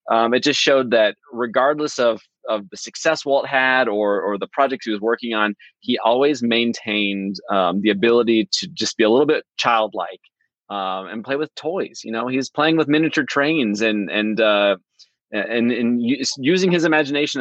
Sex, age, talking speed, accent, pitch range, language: male, 20-39, 185 wpm, American, 105-130 Hz, English